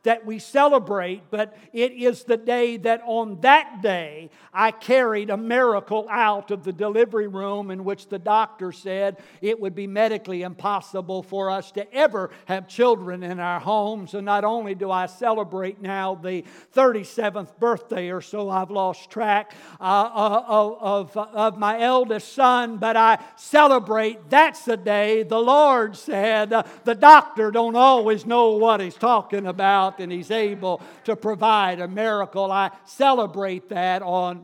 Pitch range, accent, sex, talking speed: 195-235 Hz, American, male, 160 wpm